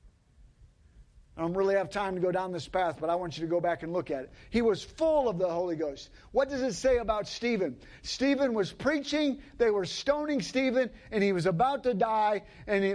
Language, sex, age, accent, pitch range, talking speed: English, male, 50-69, American, 195-275 Hz, 220 wpm